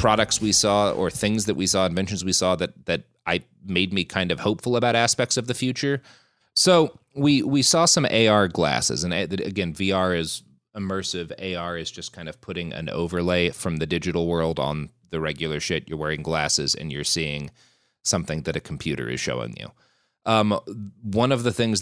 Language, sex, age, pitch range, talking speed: English, male, 30-49, 85-110 Hz, 190 wpm